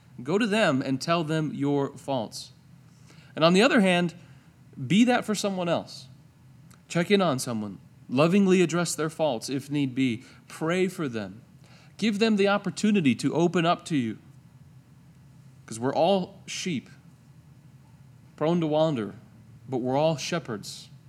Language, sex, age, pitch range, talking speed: English, male, 40-59, 120-155 Hz, 150 wpm